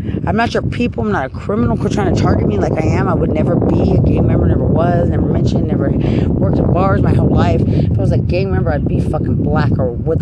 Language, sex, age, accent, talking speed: English, female, 30-49, American, 270 wpm